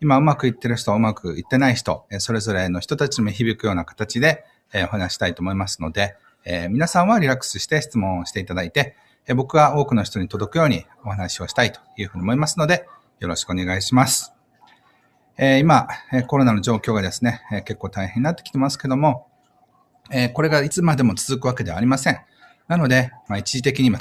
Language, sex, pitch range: Japanese, male, 105-140 Hz